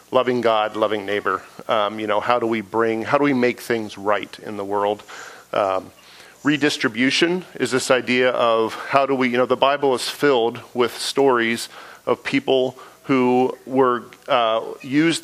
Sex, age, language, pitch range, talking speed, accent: male, 40-59, English, 110-130 Hz, 170 wpm, American